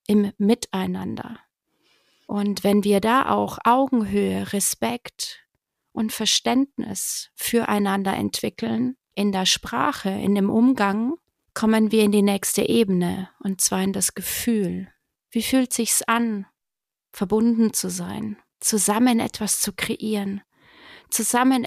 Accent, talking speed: German, 115 wpm